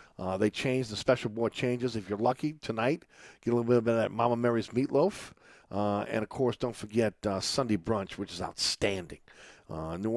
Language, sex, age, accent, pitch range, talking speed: English, male, 50-69, American, 105-135 Hz, 200 wpm